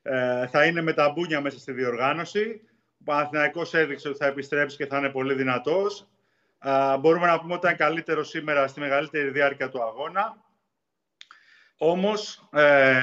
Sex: male